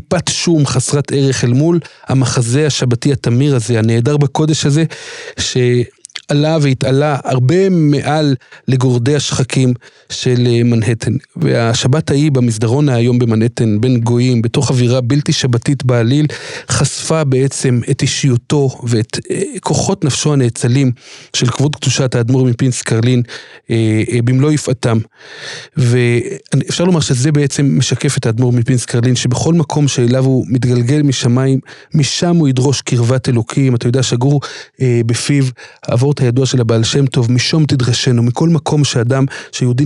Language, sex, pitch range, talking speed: Hebrew, male, 125-150 Hz, 135 wpm